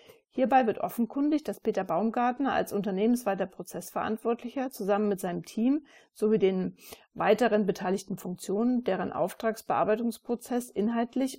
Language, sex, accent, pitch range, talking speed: German, female, German, 195-235 Hz, 110 wpm